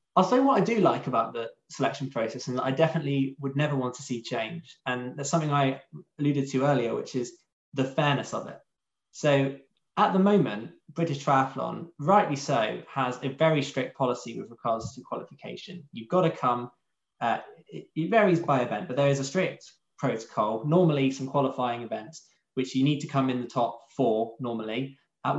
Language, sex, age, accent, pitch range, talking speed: English, male, 20-39, British, 125-155 Hz, 185 wpm